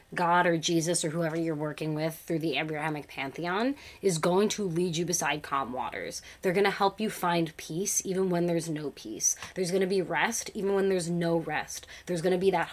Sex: female